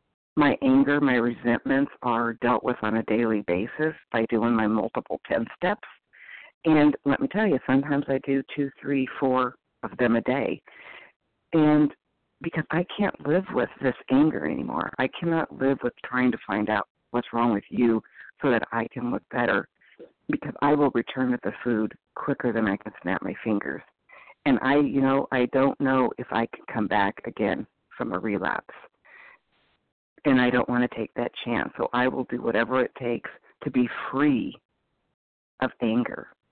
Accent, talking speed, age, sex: American, 180 wpm, 50-69, female